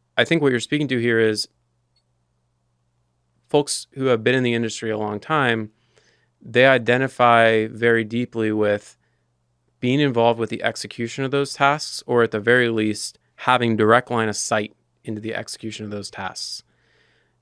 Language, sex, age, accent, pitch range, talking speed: English, male, 30-49, American, 105-120 Hz, 160 wpm